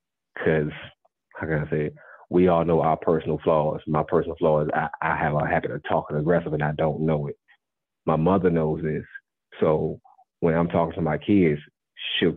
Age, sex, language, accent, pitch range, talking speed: 30-49, male, English, American, 80-85 Hz, 195 wpm